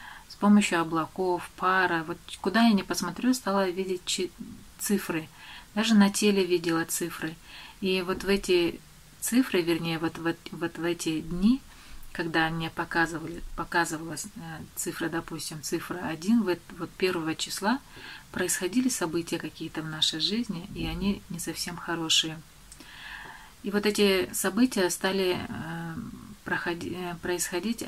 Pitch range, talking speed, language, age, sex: 170-200 Hz, 120 wpm, Russian, 30-49, female